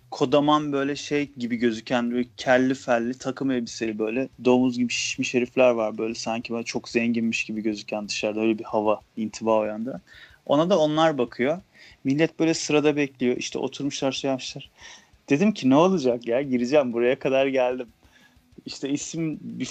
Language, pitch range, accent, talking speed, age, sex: Turkish, 120-160 Hz, native, 160 wpm, 30-49, male